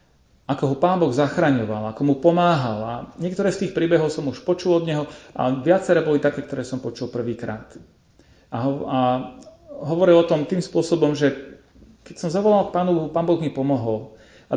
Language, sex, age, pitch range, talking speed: Slovak, male, 40-59, 125-170 Hz, 190 wpm